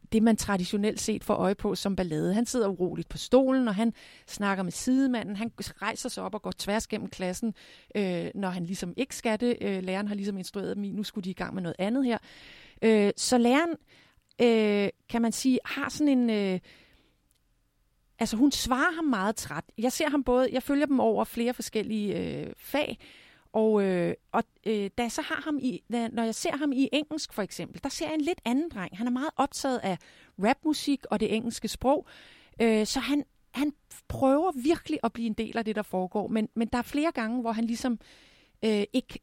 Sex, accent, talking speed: female, native, 210 wpm